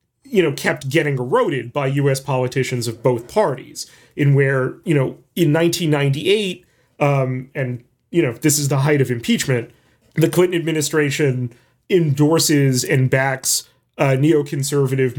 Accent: American